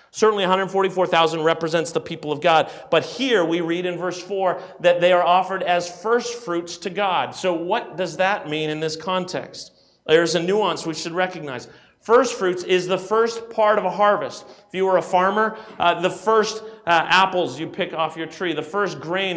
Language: English